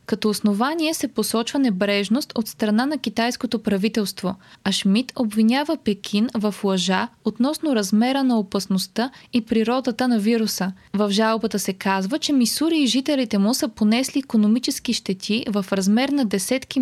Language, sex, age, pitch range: Bulgarian, female, 20-39, 205-245 Hz